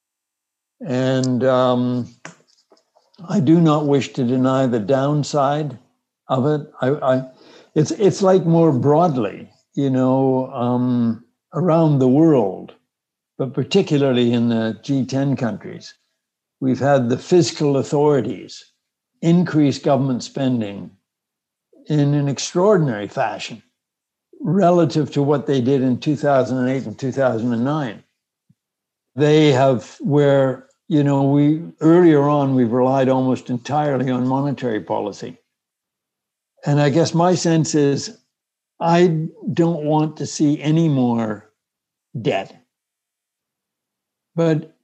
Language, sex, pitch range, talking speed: German, male, 130-155 Hz, 110 wpm